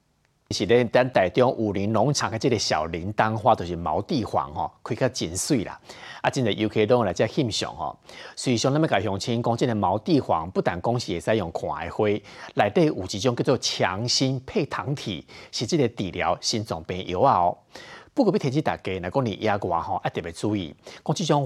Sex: male